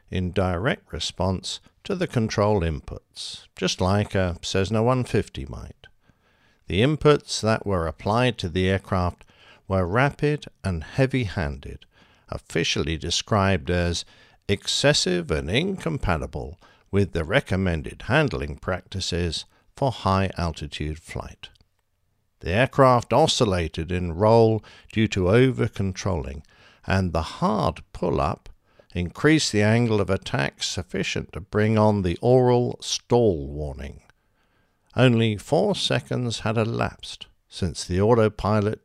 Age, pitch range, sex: 60-79, 90-115 Hz, male